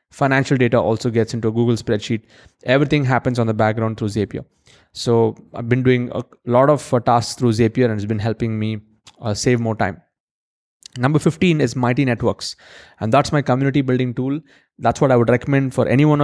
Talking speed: 190 wpm